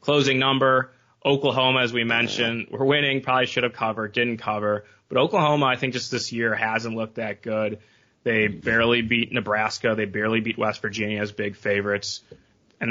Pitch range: 110-130 Hz